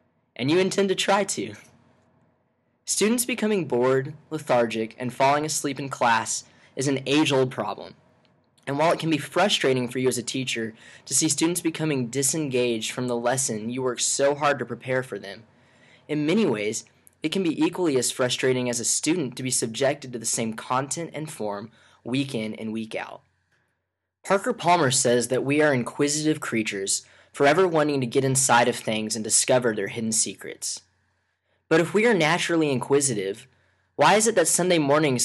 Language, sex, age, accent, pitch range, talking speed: English, male, 10-29, American, 115-150 Hz, 175 wpm